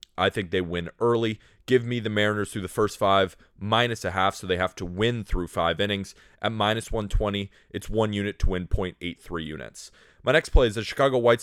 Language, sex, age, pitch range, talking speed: English, male, 20-39, 95-120 Hz, 215 wpm